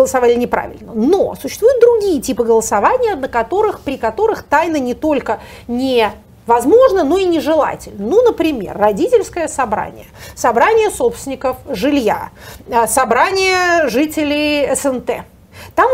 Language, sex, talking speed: Russian, female, 110 wpm